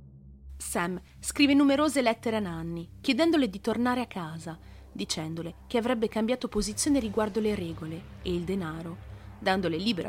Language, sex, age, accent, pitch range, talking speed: Italian, female, 30-49, native, 160-235 Hz, 145 wpm